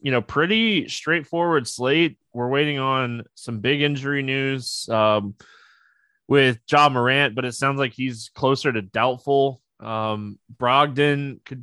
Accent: American